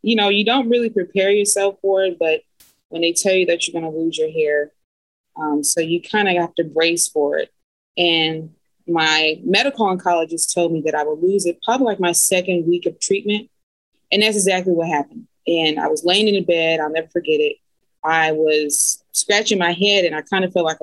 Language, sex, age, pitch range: English, female, 20-39, 160-195 Hz